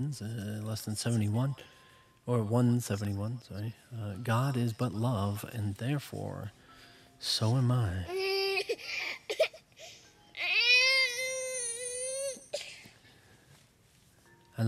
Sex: male